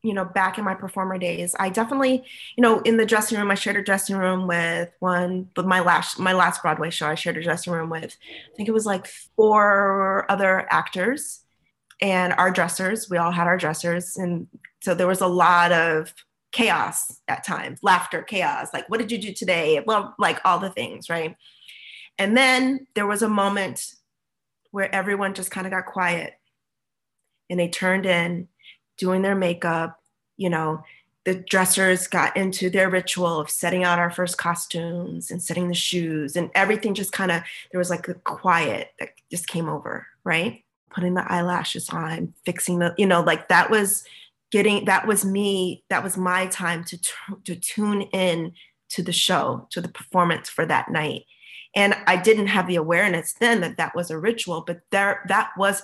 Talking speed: 190 wpm